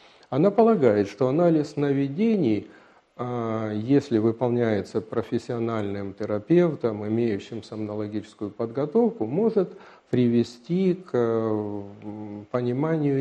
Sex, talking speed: male, 75 wpm